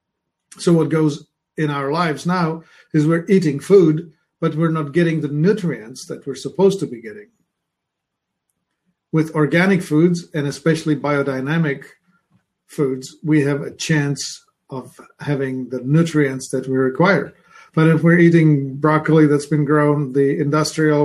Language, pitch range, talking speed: English, 145-170 Hz, 145 wpm